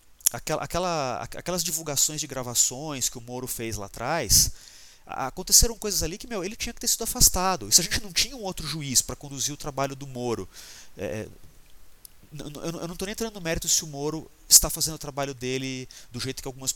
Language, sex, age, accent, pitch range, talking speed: Portuguese, male, 30-49, Brazilian, 125-180 Hz, 205 wpm